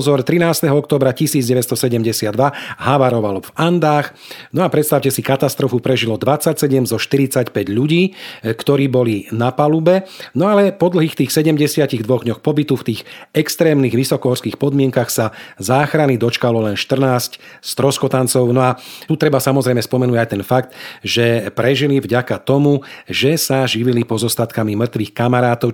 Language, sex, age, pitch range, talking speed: Slovak, male, 40-59, 115-140 Hz, 135 wpm